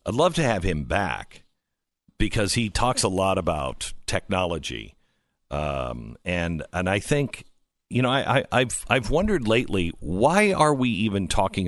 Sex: male